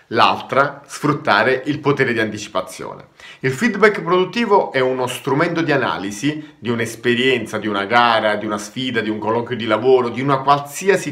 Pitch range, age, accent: 125-175 Hz, 30-49, native